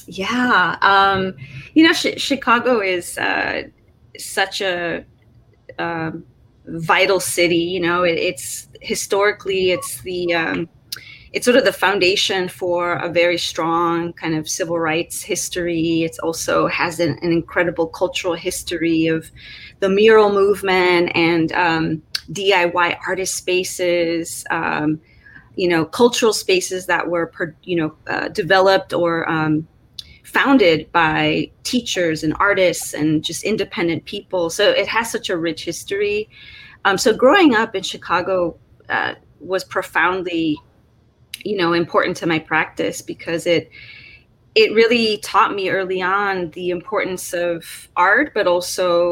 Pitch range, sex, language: 165-190 Hz, female, English